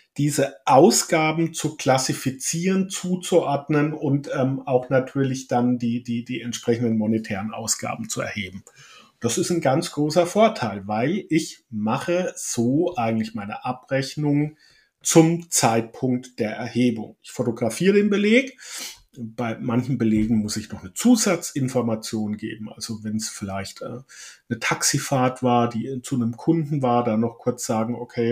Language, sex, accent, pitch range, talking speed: German, male, German, 115-160 Hz, 140 wpm